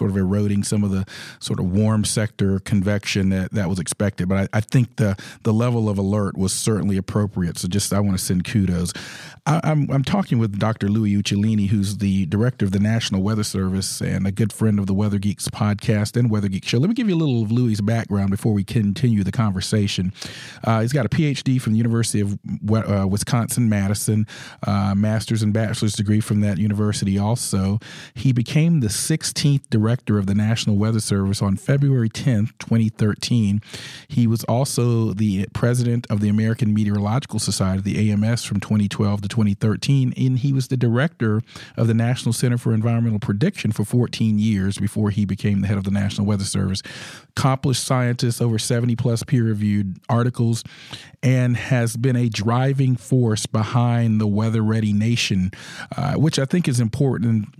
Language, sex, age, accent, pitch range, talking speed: English, male, 40-59, American, 100-120 Hz, 185 wpm